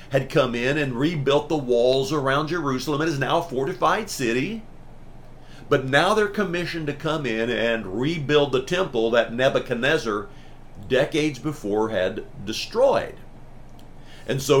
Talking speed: 140 wpm